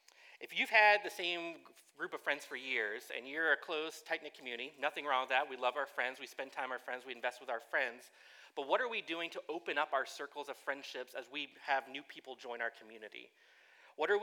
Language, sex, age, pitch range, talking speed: English, male, 30-49, 135-175 Hz, 240 wpm